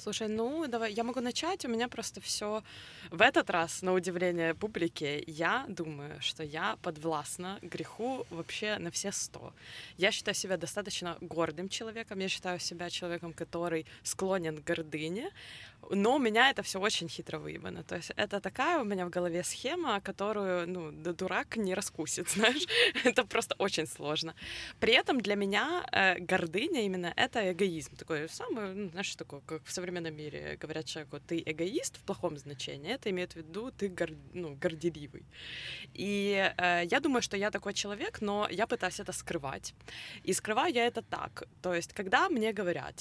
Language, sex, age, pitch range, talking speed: Ukrainian, female, 20-39, 165-210 Hz, 170 wpm